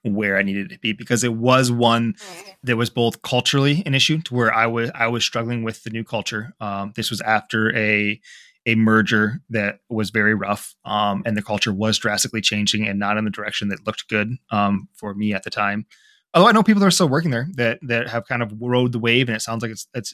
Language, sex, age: English, male, 20-39